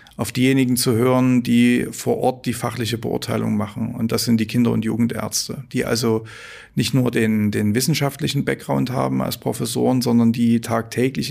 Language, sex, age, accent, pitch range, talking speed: German, male, 40-59, German, 115-130 Hz, 170 wpm